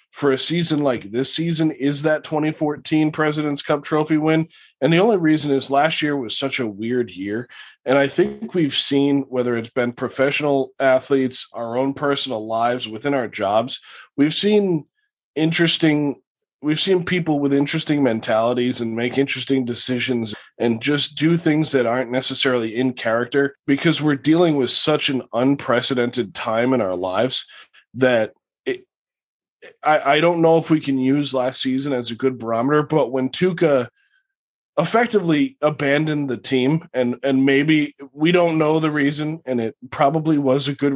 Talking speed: 165 wpm